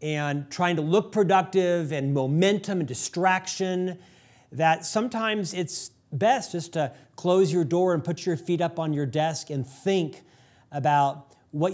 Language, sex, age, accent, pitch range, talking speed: English, male, 40-59, American, 145-185 Hz, 155 wpm